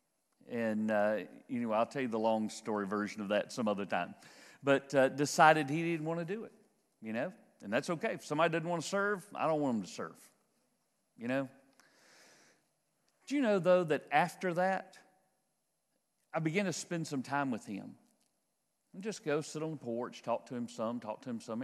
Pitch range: 140-210 Hz